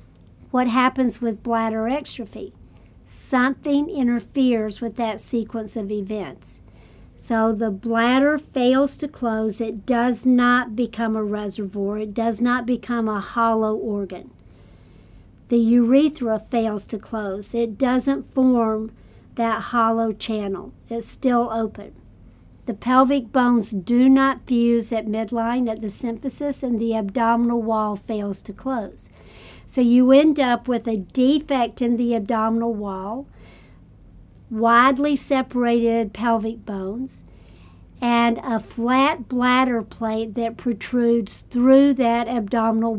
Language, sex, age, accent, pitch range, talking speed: English, male, 50-69, American, 215-250 Hz, 125 wpm